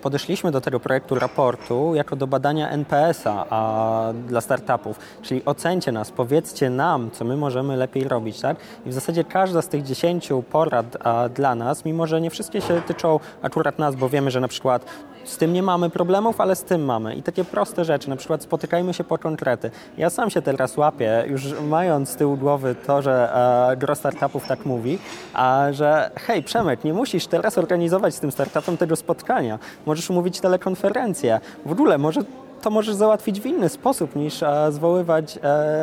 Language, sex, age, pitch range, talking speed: Polish, male, 20-39, 135-175 Hz, 190 wpm